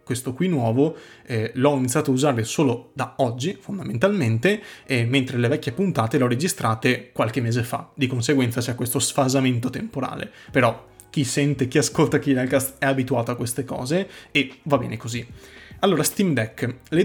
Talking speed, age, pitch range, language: 170 wpm, 20-39, 125-150 Hz, Italian